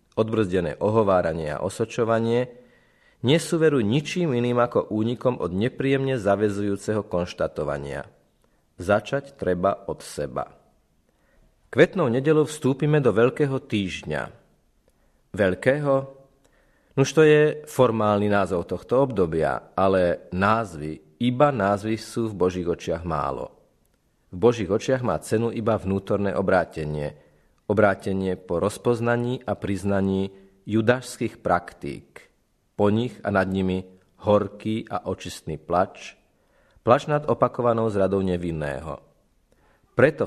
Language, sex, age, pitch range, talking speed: Slovak, male, 40-59, 95-125 Hz, 105 wpm